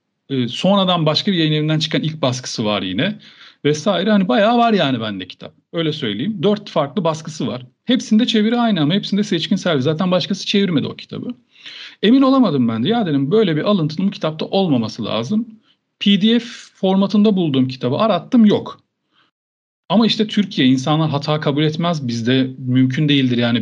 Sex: male